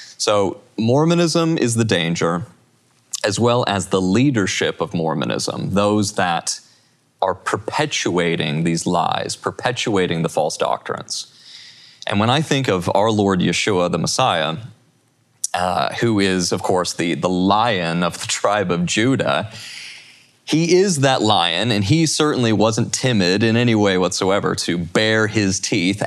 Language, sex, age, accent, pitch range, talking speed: English, male, 30-49, American, 90-115 Hz, 145 wpm